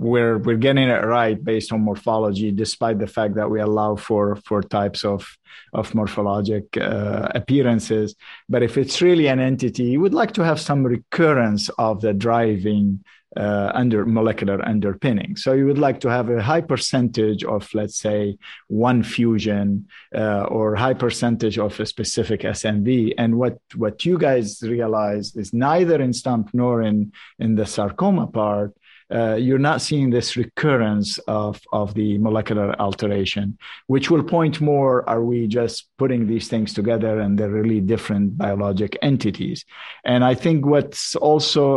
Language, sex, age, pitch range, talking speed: English, male, 50-69, 105-130 Hz, 160 wpm